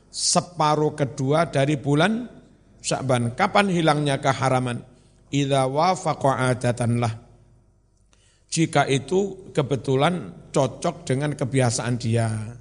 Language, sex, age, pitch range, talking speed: Indonesian, male, 50-69, 125-155 Hz, 75 wpm